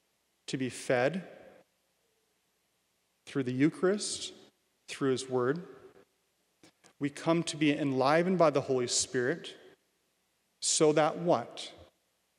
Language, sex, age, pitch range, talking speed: English, male, 30-49, 130-165 Hz, 100 wpm